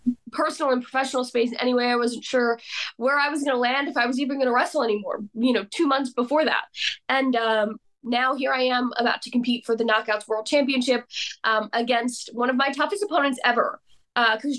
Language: English